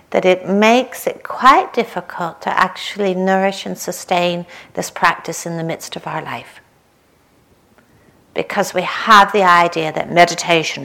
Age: 60-79